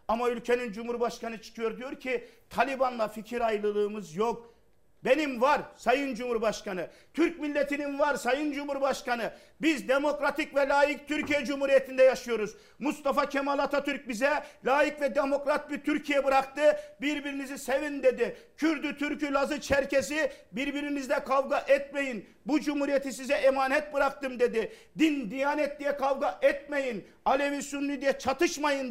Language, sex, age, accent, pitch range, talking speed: Turkish, male, 50-69, native, 255-300 Hz, 125 wpm